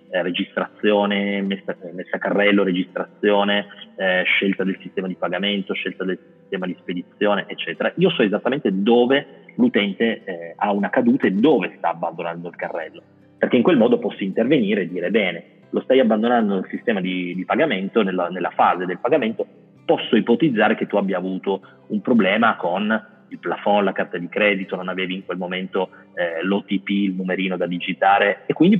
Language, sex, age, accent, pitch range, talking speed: Italian, male, 30-49, native, 90-115 Hz, 170 wpm